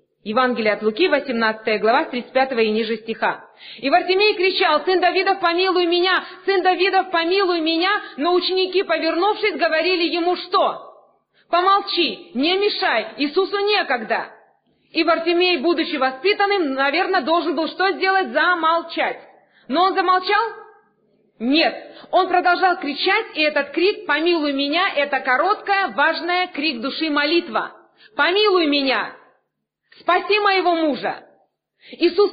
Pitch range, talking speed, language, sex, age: 245-370 Hz, 120 wpm, Russian, female, 30-49